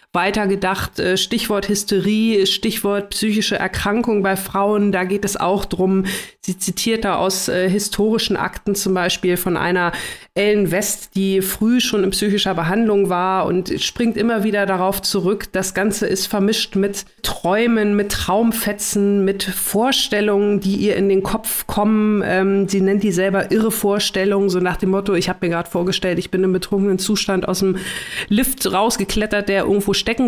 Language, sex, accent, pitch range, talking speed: German, female, German, 190-215 Hz, 165 wpm